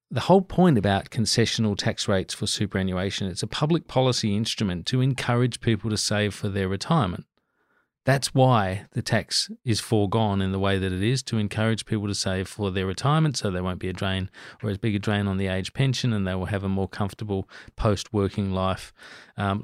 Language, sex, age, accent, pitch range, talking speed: English, male, 40-59, Australian, 95-115 Hz, 205 wpm